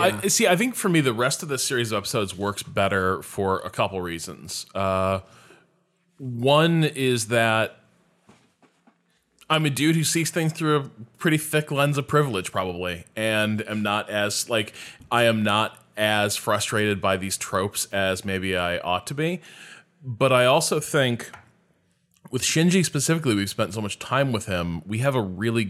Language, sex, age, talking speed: English, male, 20-39, 175 wpm